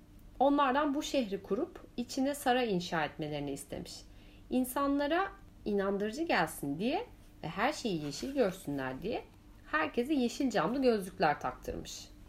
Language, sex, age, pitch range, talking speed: Turkish, female, 30-49, 175-285 Hz, 115 wpm